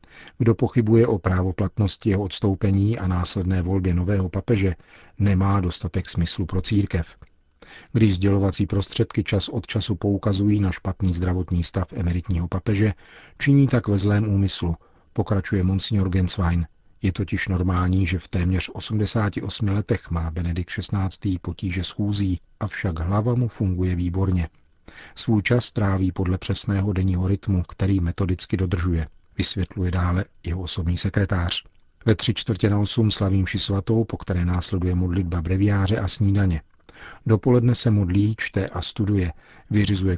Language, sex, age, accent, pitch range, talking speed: Czech, male, 40-59, native, 90-105 Hz, 135 wpm